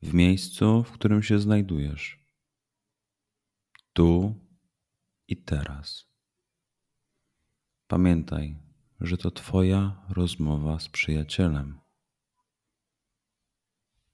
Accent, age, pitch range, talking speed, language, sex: native, 30-49, 85-105 Hz, 70 wpm, Polish, male